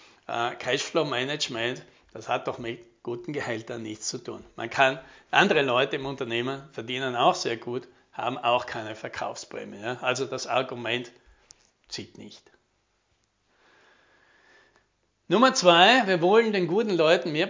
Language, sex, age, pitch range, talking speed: German, male, 60-79, 120-175 Hz, 130 wpm